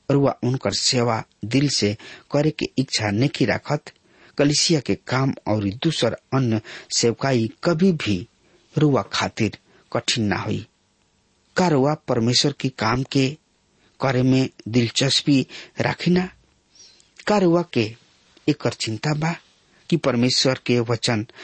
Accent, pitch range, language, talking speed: Indian, 110-150 Hz, English, 115 wpm